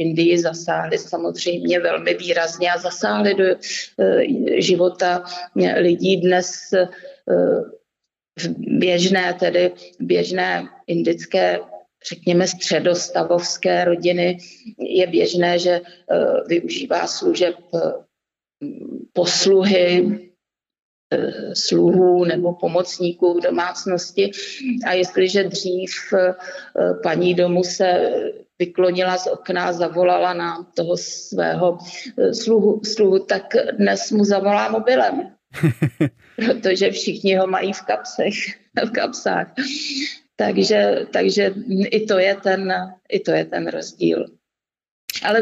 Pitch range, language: 175-205 Hz, Czech